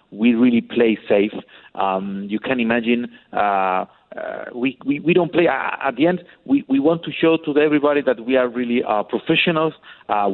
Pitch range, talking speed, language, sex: 105-130 Hz, 190 wpm, English, male